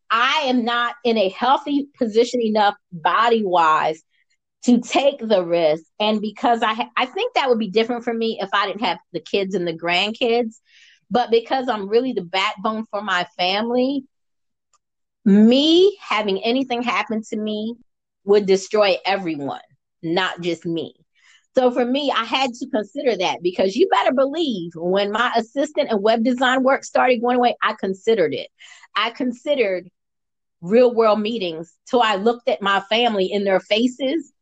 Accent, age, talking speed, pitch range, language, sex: American, 30-49, 165 wpm, 185-245 Hz, English, female